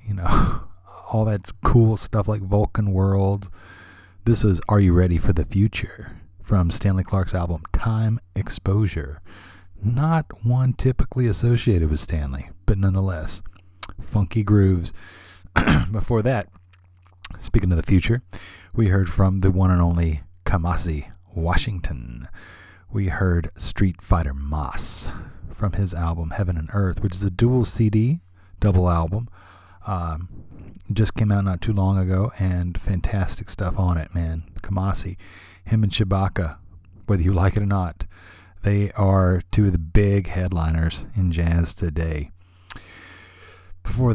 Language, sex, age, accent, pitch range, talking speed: English, male, 30-49, American, 90-105 Hz, 135 wpm